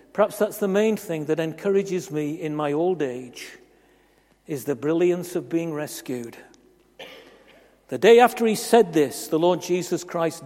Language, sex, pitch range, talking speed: English, male, 145-185 Hz, 160 wpm